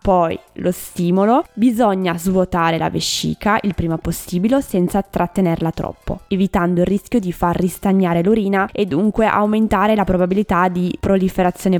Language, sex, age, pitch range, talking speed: Italian, female, 20-39, 180-230 Hz, 135 wpm